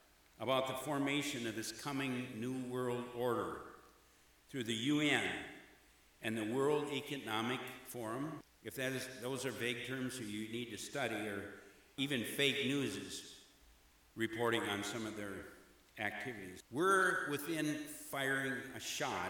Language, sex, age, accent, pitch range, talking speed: English, male, 60-79, American, 120-145 Hz, 135 wpm